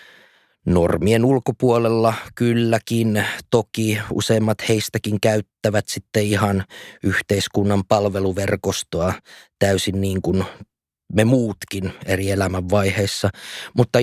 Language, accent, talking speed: Finnish, native, 80 wpm